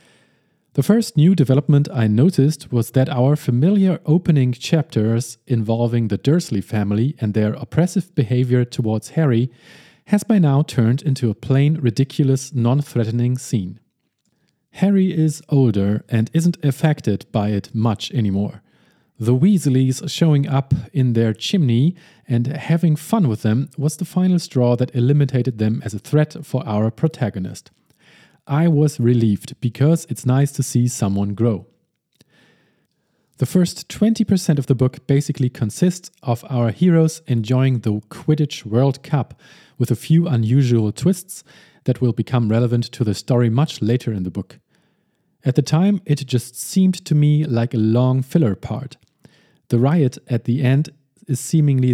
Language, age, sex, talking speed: English, 40-59, male, 150 wpm